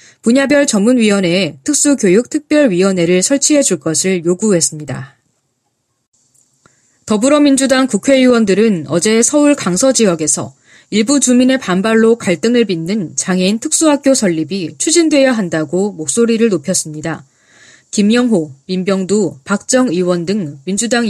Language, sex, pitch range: Korean, female, 175-255 Hz